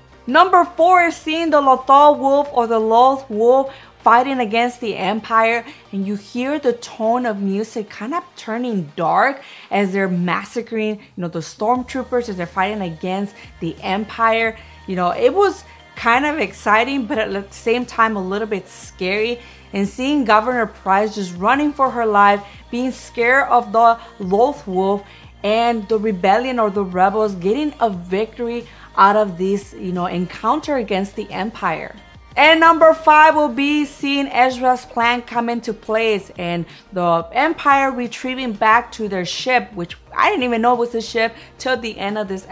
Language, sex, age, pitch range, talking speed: English, female, 20-39, 195-245 Hz, 170 wpm